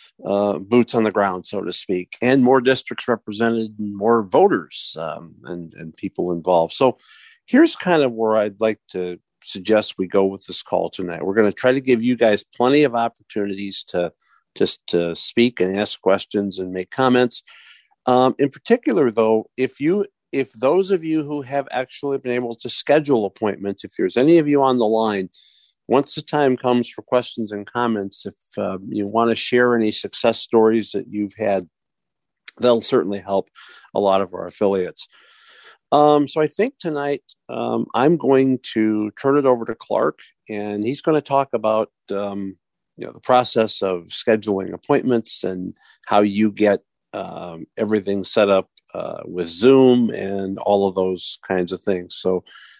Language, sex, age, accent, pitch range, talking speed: English, male, 50-69, American, 100-130 Hz, 175 wpm